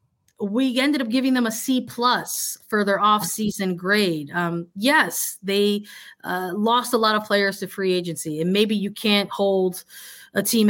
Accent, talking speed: American, 180 wpm